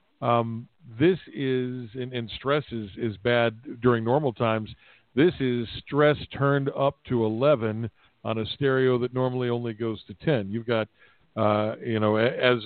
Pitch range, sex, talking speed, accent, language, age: 110-130 Hz, male, 160 wpm, American, English, 50-69